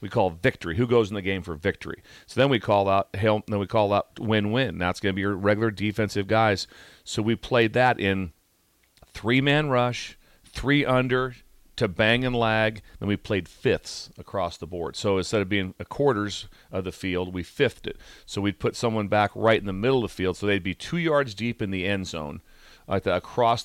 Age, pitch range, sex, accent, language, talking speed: 40-59, 95-120 Hz, male, American, English, 210 wpm